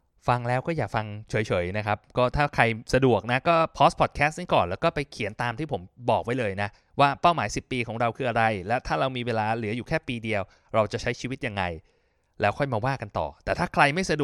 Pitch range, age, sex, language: 110-150 Hz, 20-39, male, Thai